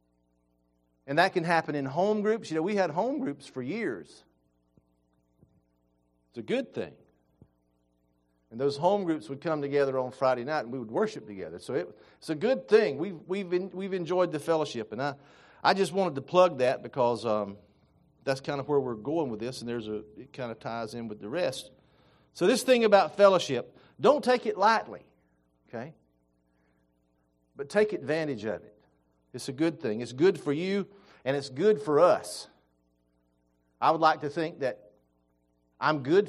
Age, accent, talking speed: 50-69, American, 185 wpm